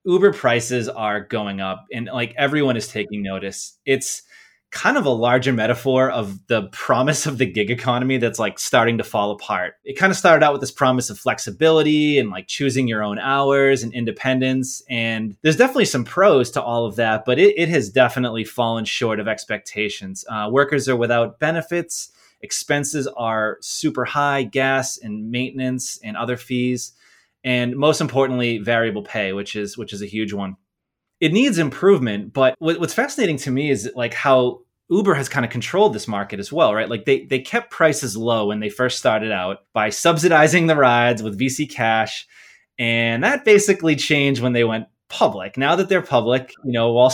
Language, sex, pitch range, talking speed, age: English, male, 115-150 Hz, 190 wpm, 20-39